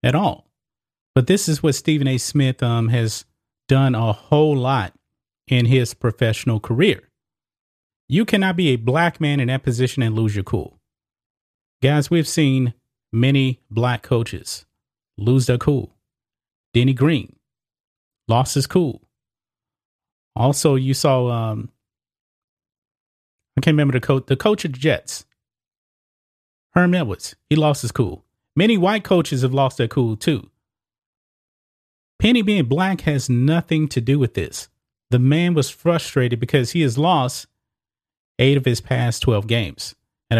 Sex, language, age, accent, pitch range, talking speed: male, English, 30-49, American, 115-150 Hz, 145 wpm